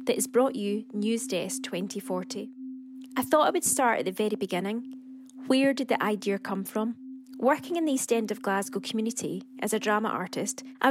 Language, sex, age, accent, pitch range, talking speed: English, female, 20-39, British, 210-260 Hz, 185 wpm